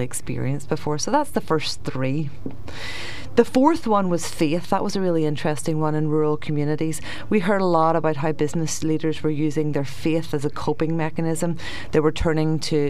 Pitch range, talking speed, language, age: 145-175 Hz, 190 wpm, English, 30-49